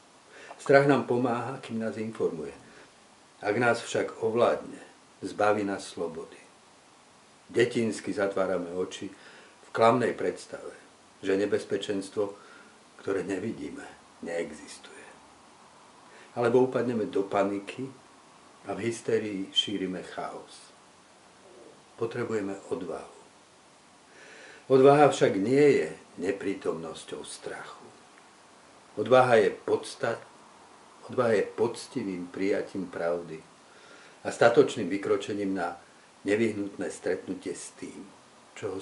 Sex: male